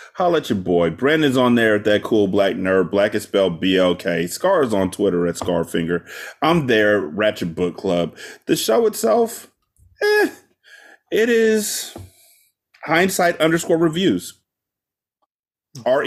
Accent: American